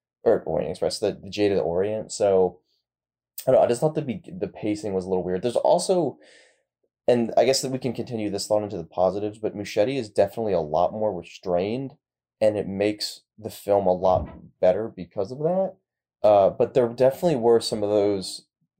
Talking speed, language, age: 205 wpm, English, 20-39